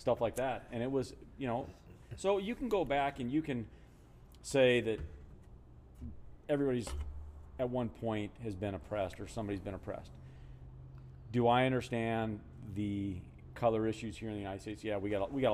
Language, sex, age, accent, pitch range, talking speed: English, male, 40-59, American, 90-120 Hz, 170 wpm